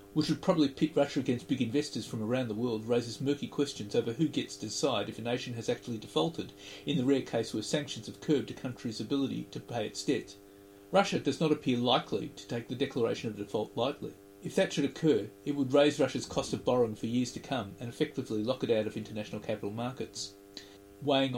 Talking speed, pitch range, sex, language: 220 wpm, 100-135 Hz, male, English